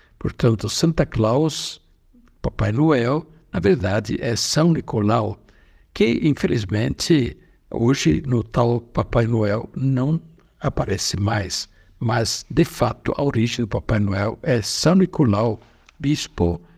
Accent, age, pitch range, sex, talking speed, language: Brazilian, 60-79, 110-160 Hz, male, 115 wpm, Portuguese